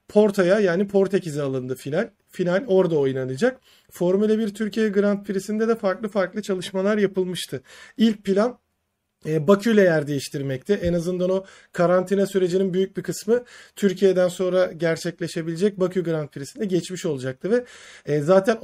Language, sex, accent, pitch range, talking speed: Turkish, male, native, 165-210 Hz, 130 wpm